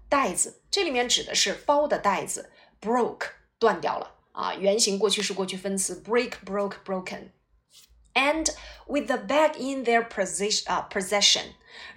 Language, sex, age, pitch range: Chinese, female, 20-39, 200-275 Hz